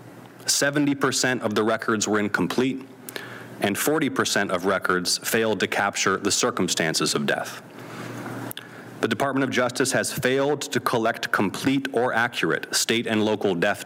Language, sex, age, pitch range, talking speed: English, male, 30-49, 110-135 Hz, 145 wpm